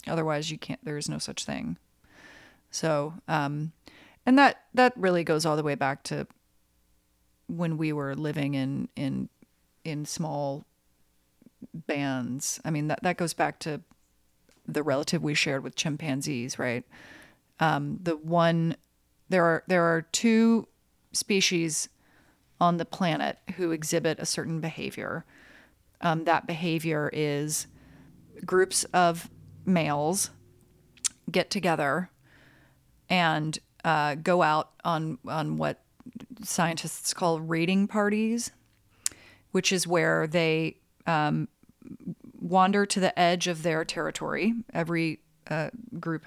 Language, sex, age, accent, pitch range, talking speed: English, female, 30-49, American, 145-175 Hz, 125 wpm